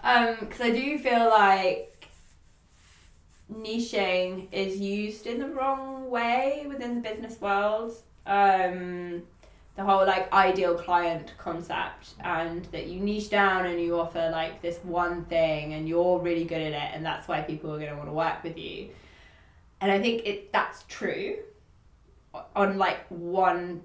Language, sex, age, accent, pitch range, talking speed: English, female, 20-39, British, 170-205 Hz, 160 wpm